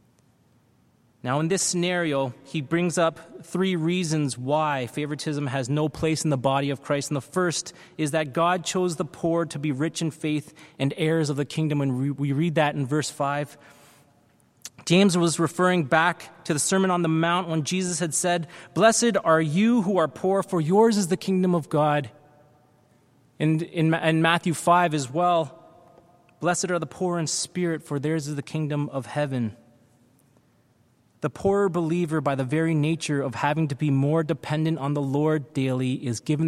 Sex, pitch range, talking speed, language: male, 130-165 Hz, 180 wpm, English